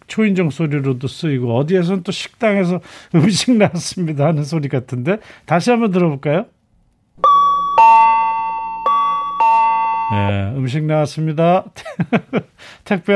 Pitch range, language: 120-185 Hz, Korean